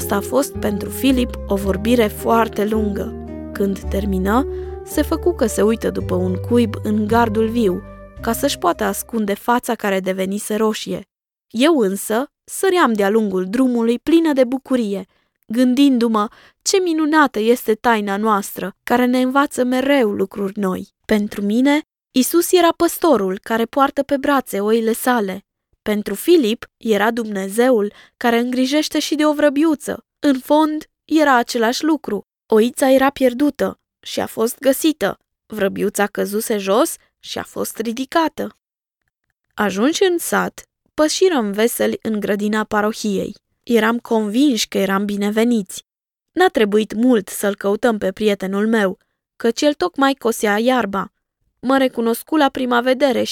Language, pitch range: Romanian, 205-275 Hz